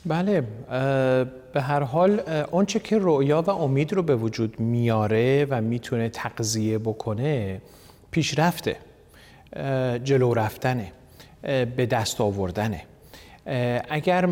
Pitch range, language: 110-130 Hz, Persian